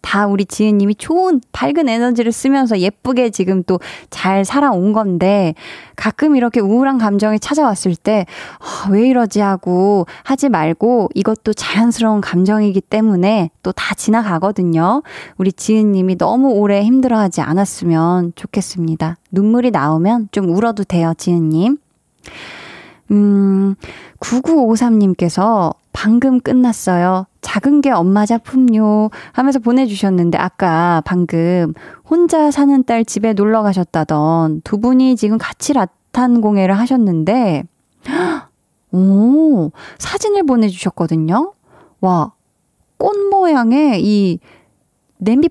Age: 20-39